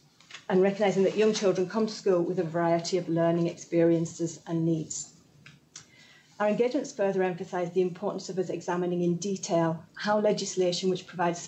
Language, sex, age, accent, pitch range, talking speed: English, female, 40-59, British, 165-190 Hz, 160 wpm